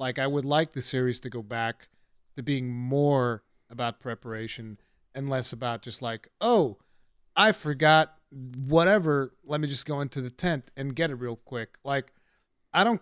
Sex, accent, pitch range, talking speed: male, American, 125-165 Hz, 175 wpm